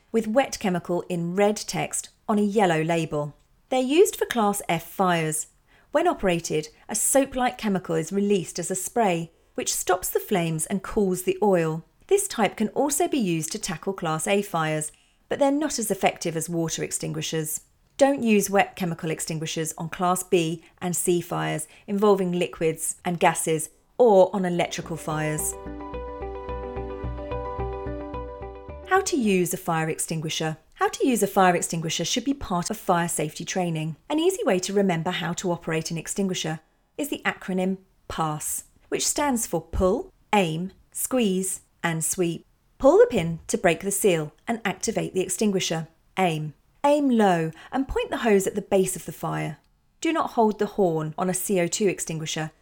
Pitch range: 160-205 Hz